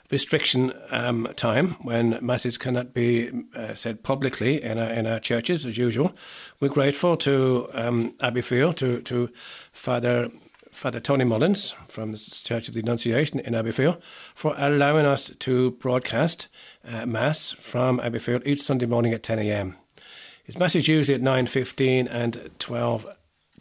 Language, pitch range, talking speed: English, 120-140 Hz, 145 wpm